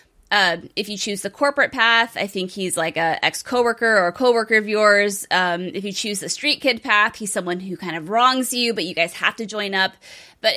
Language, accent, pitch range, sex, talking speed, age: English, American, 180-240 Hz, female, 240 wpm, 20-39